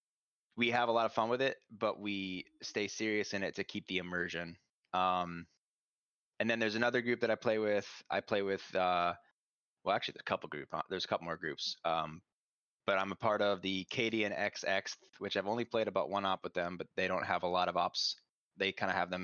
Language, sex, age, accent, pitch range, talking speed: English, male, 20-39, American, 95-105 Hz, 235 wpm